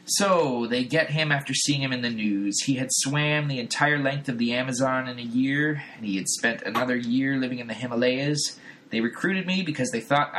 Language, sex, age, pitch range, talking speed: English, male, 20-39, 115-145 Hz, 220 wpm